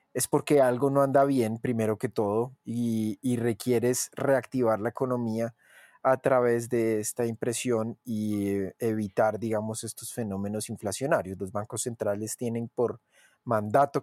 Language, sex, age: Spanish, male, 30-49